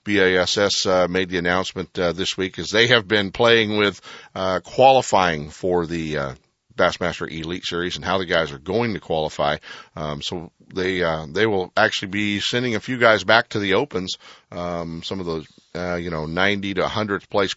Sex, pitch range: male, 85-115 Hz